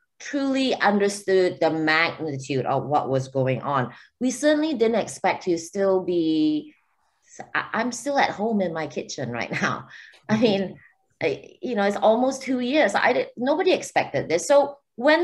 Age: 20-39